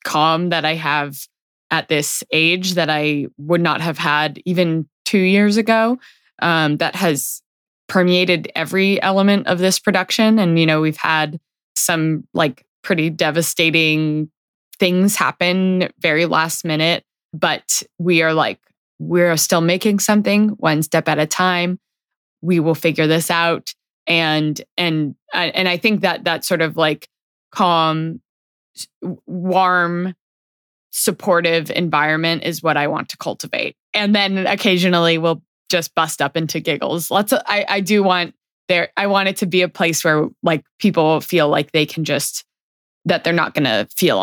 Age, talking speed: 20-39, 155 wpm